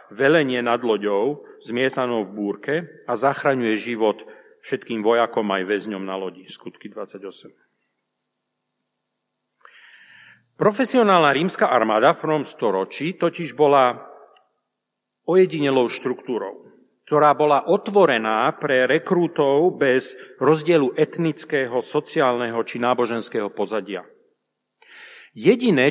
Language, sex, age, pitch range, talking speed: Slovak, male, 40-59, 125-175 Hz, 95 wpm